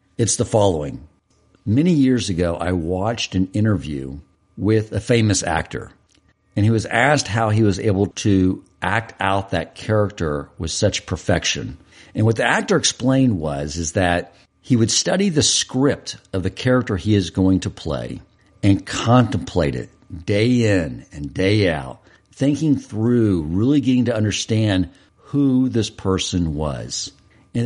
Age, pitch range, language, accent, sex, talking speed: 50-69, 95-130 Hz, English, American, male, 150 wpm